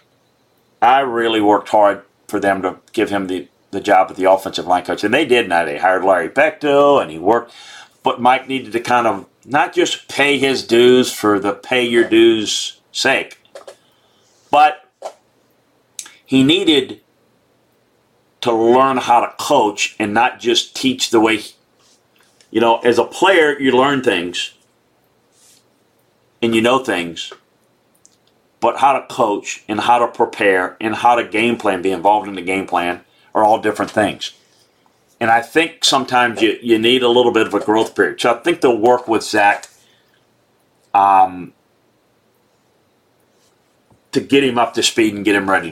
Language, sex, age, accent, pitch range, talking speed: English, male, 40-59, American, 100-130 Hz, 165 wpm